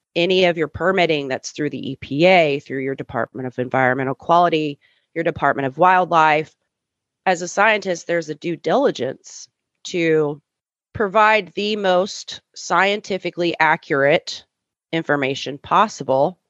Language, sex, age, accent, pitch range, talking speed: English, female, 30-49, American, 145-190 Hz, 120 wpm